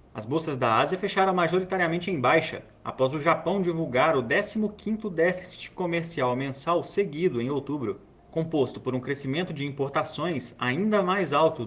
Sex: male